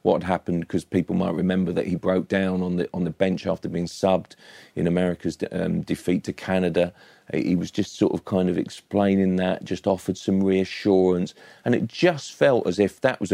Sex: male